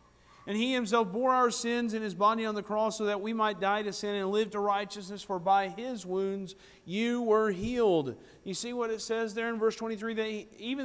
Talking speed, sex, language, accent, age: 230 wpm, male, English, American, 40-59